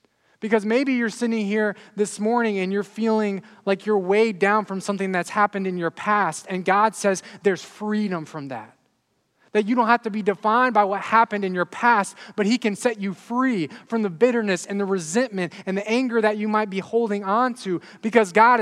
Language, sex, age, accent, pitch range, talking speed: English, male, 20-39, American, 175-215 Hz, 210 wpm